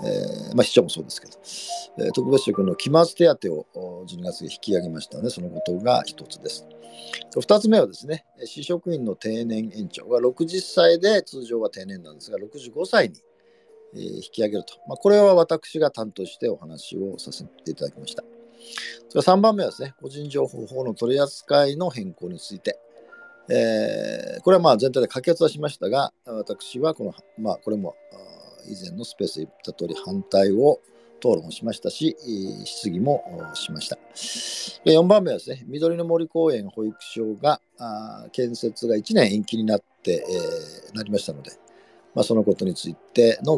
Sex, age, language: male, 50-69, Japanese